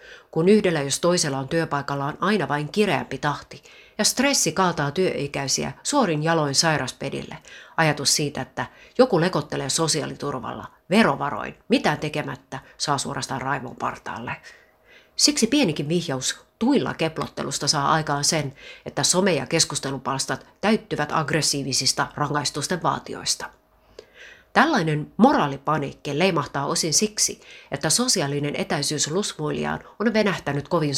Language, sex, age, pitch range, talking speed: Finnish, female, 30-49, 145-205 Hz, 110 wpm